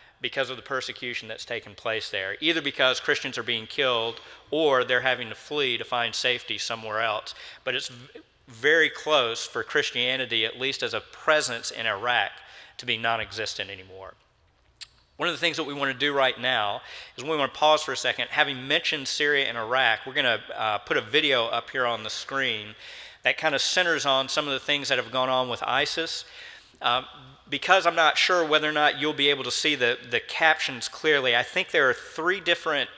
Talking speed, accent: 200 wpm, American